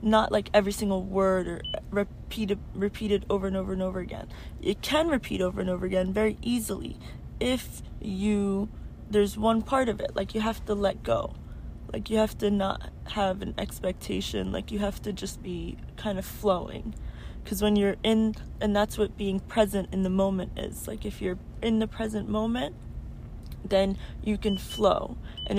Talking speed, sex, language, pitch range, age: 185 wpm, female, English, 170-215 Hz, 20-39